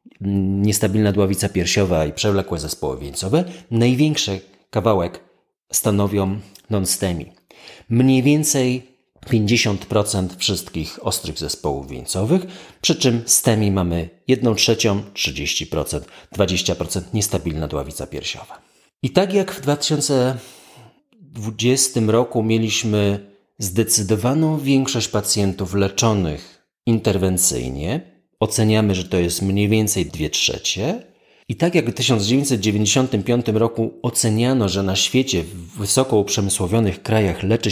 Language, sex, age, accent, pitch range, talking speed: Polish, male, 30-49, native, 95-120 Hz, 100 wpm